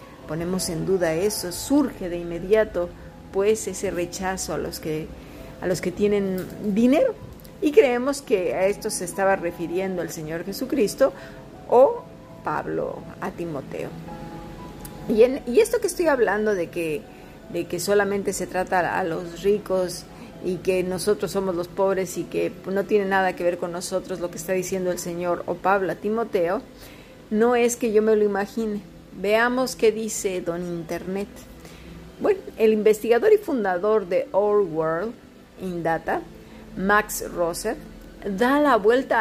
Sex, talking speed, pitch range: female, 155 wpm, 180-225 Hz